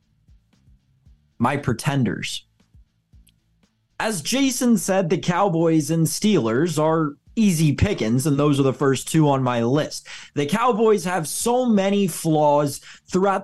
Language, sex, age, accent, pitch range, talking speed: English, male, 20-39, American, 135-210 Hz, 125 wpm